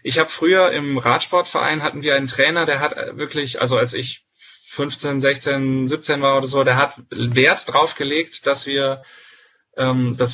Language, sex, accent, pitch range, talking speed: German, male, German, 130-160 Hz, 170 wpm